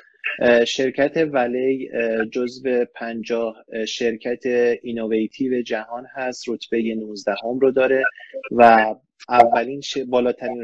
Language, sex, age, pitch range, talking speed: Persian, male, 30-49, 115-135 Hz, 95 wpm